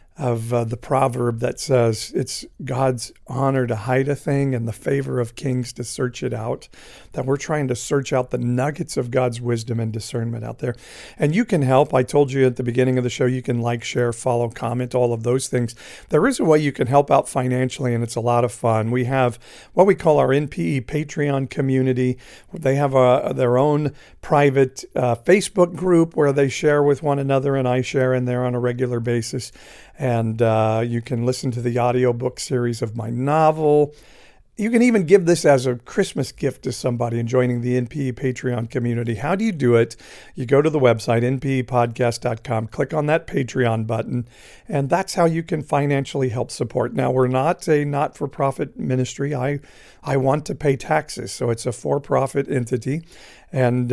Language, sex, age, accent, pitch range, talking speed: English, male, 50-69, American, 120-145 Hz, 200 wpm